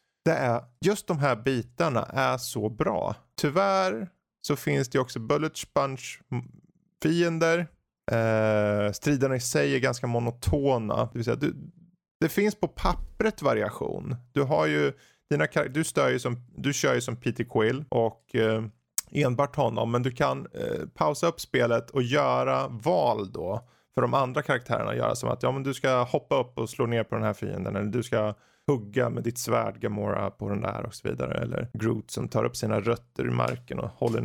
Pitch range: 115-145 Hz